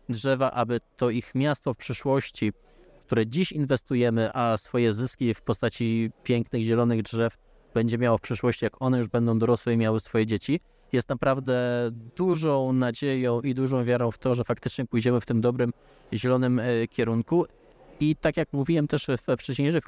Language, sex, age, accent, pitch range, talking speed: Polish, male, 20-39, native, 120-150 Hz, 165 wpm